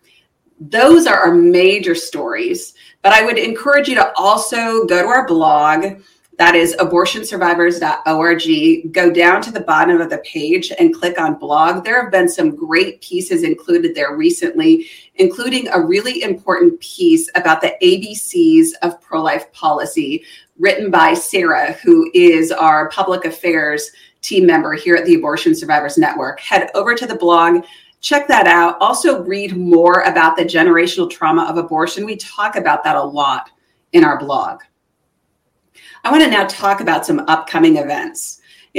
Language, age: English, 30-49